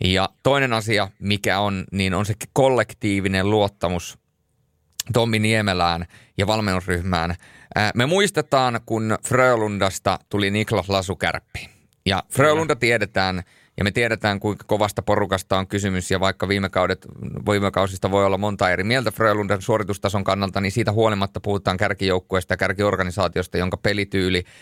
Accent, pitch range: native, 95-125 Hz